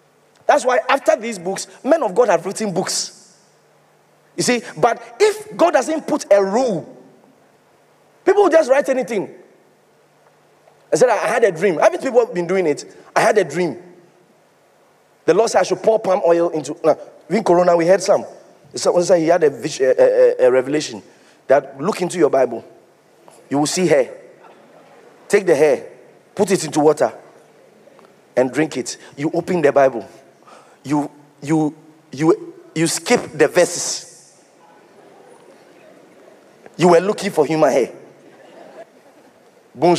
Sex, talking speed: male, 155 wpm